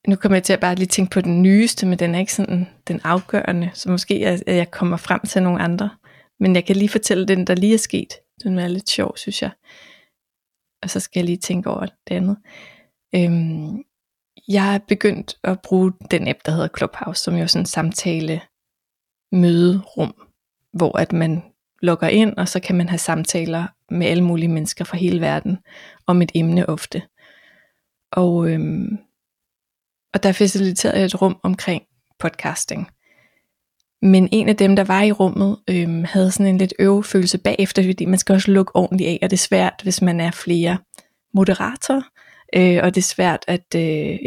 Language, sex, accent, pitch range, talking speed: Danish, female, native, 175-200 Hz, 190 wpm